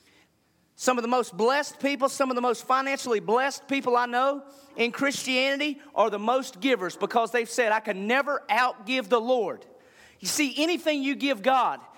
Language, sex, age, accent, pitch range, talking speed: English, male, 40-59, American, 195-270 Hz, 180 wpm